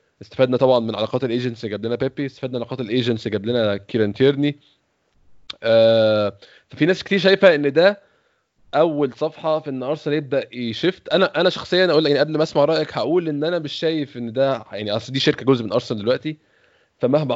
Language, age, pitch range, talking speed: Arabic, 20-39, 120-150 Hz, 190 wpm